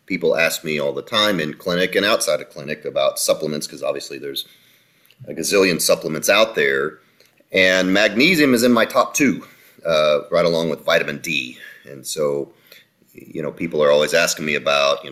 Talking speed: 185 wpm